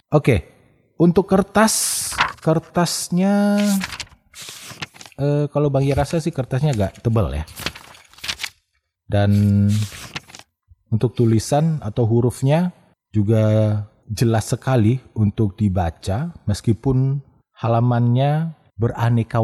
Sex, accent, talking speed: male, native, 80 wpm